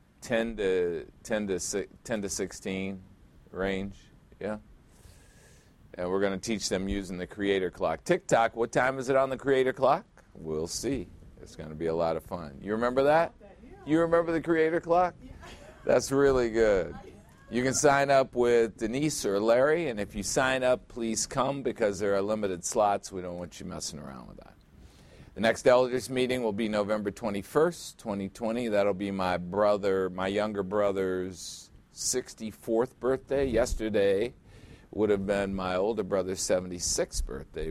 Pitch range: 95-125 Hz